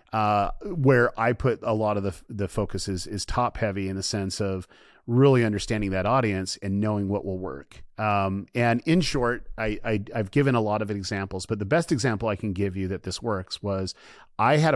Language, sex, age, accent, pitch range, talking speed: English, male, 30-49, American, 100-120 Hz, 220 wpm